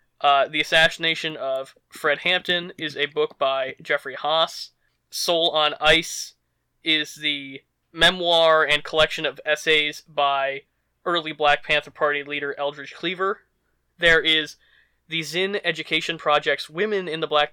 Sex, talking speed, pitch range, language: male, 135 wpm, 145-165 Hz, English